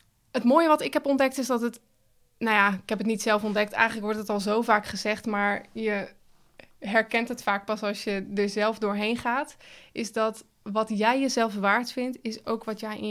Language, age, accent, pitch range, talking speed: Dutch, 20-39, Dutch, 205-235 Hz, 220 wpm